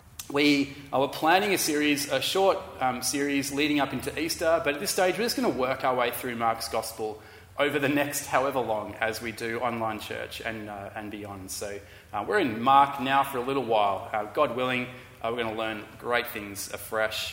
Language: English